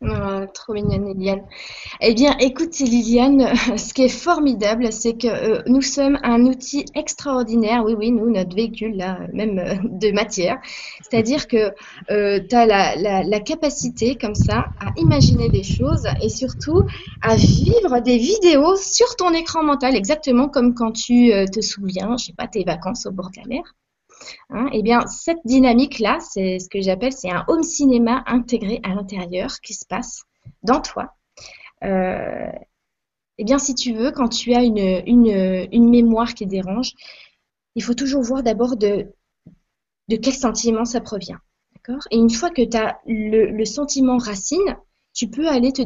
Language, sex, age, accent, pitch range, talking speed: French, female, 20-39, French, 210-260 Hz, 180 wpm